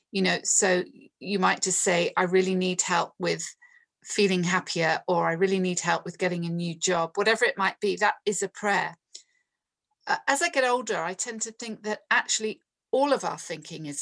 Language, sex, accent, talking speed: English, female, British, 200 wpm